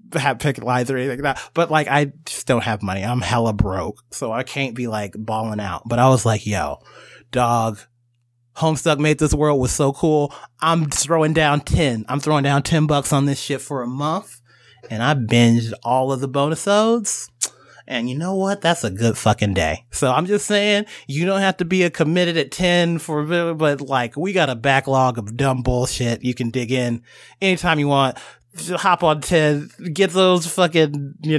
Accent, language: American, English